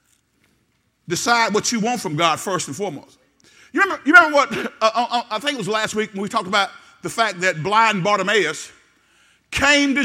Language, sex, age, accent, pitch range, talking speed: English, male, 50-69, American, 235-335 Hz, 190 wpm